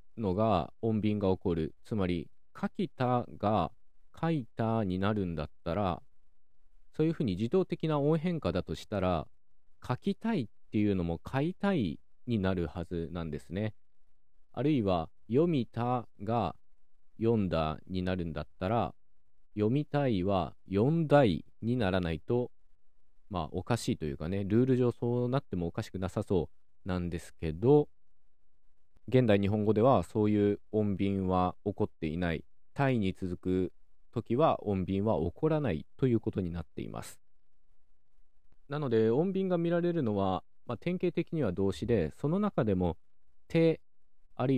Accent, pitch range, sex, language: native, 90-125 Hz, male, Japanese